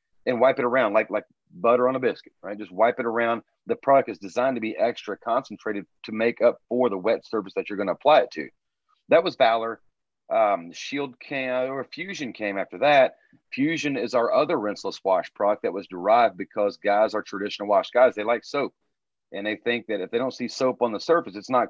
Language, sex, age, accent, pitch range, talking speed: English, male, 40-59, American, 110-135 Hz, 225 wpm